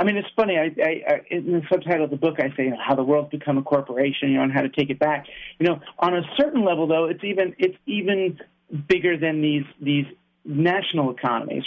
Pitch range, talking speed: 145-170 Hz, 245 wpm